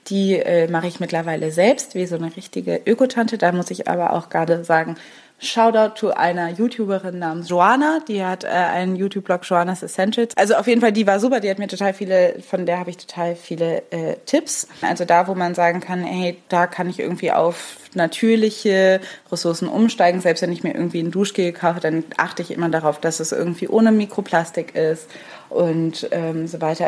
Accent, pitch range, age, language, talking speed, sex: German, 165-200 Hz, 20-39, German, 200 wpm, female